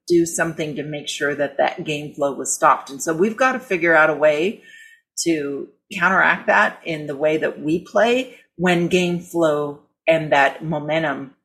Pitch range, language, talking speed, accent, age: 150-190 Hz, English, 185 wpm, American, 40-59